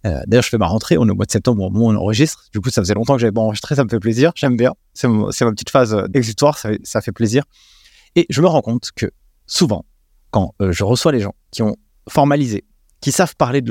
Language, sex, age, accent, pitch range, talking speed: French, male, 30-49, French, 105-140 Hz, 280 wpm